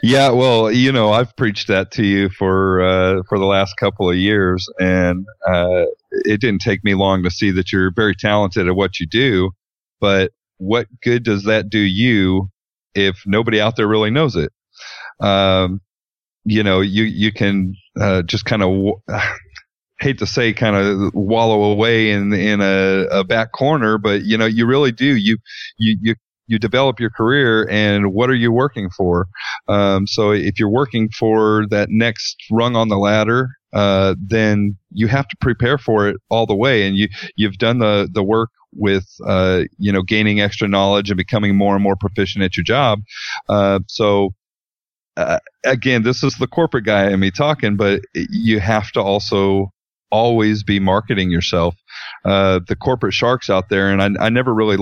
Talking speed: 185 wpm